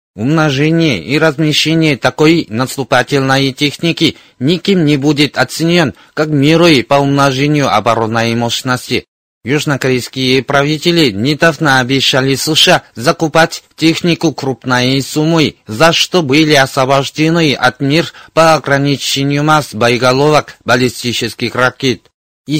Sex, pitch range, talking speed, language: male, 130-155 Hz, 105 wpm, Russian